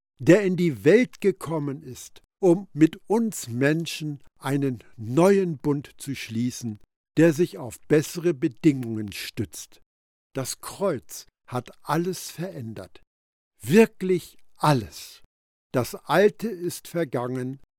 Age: 60-79